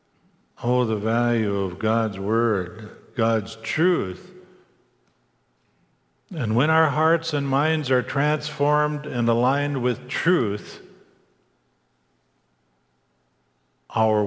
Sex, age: male, 50-69